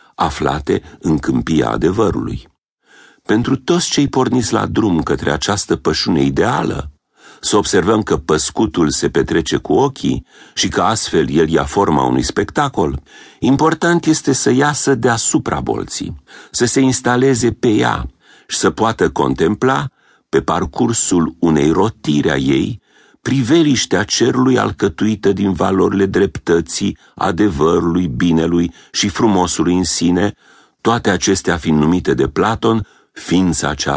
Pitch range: 80-120 Hz